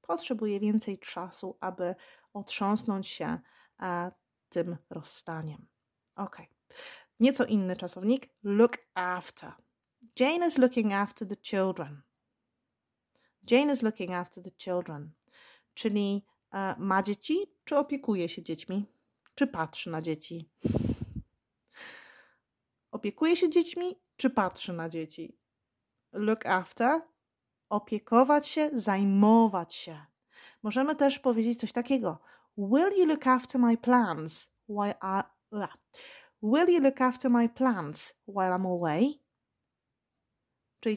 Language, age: Polish, 30-49